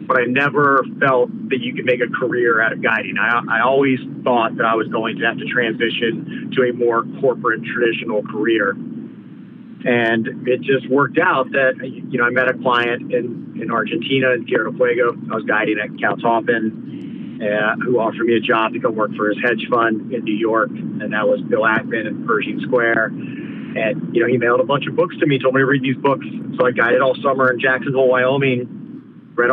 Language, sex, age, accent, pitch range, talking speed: English, male, 40-59, American, 120-140 Hz, 215 wpm